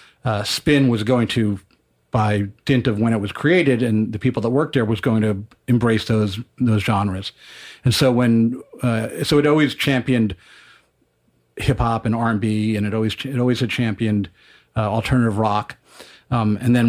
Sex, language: male, English